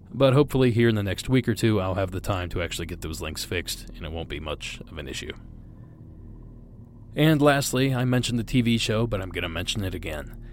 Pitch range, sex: 90-120 Hz, male